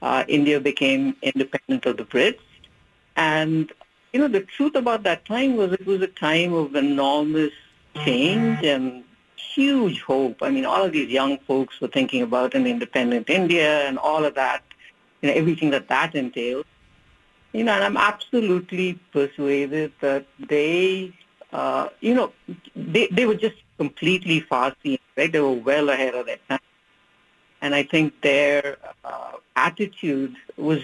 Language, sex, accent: English, female, Indian